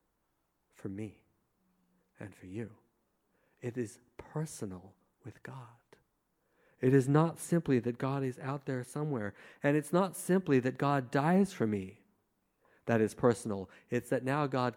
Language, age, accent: English, 50-69, American